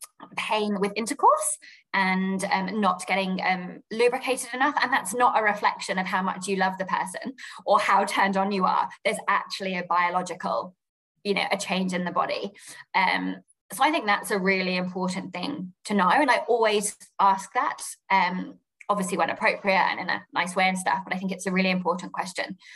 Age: 20-39